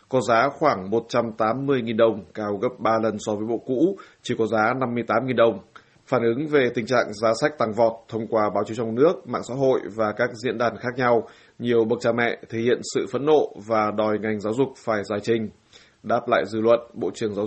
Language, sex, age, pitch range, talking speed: Vietnamese, male, 20-39, 110-120 Hz, 225 wpm